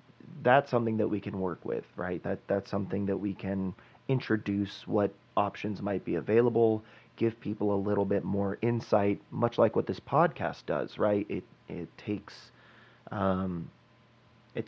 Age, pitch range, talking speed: 30-49, 95-115 Hz, 160 wpm